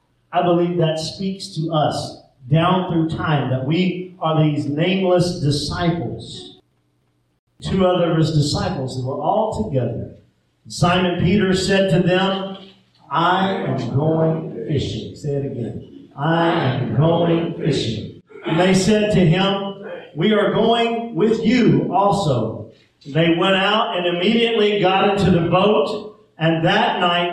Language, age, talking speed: English, 50-69, 140 wpm